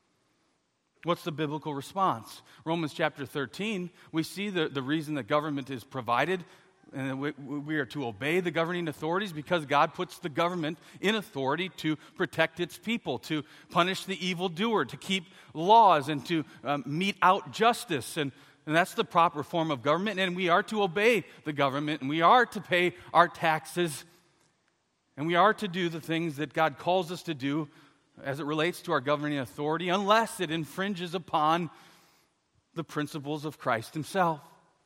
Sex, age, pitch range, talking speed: male, 40-59, 145-185 Hz, 170 wpm